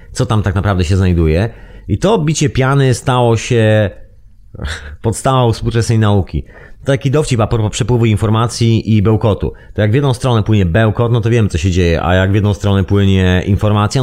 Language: Polish